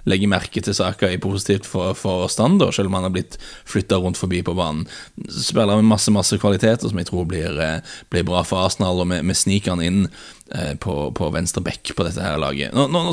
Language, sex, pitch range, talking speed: English, male, 90-110 Hz, 195 wpm